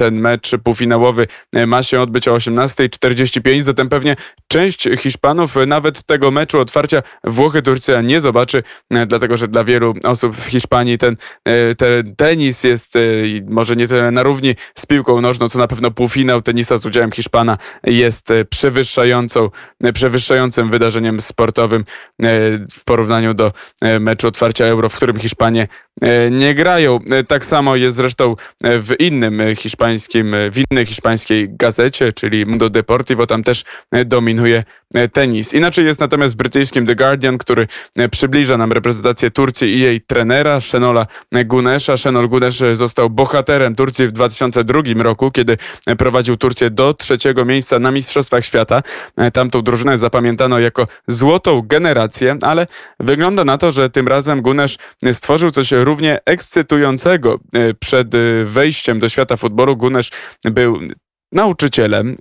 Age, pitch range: 20-39, 115-135 Hz